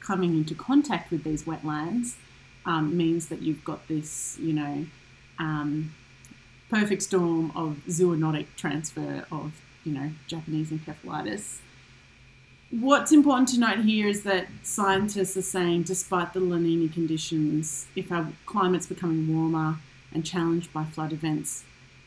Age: 30-49